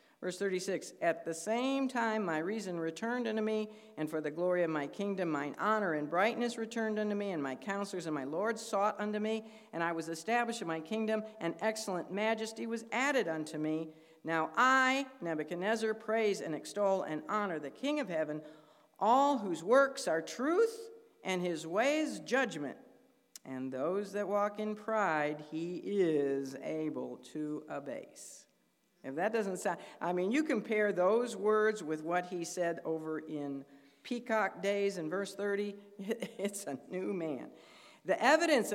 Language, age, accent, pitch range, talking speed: English, 50-69, American, 165-220 Hz, 165 wpm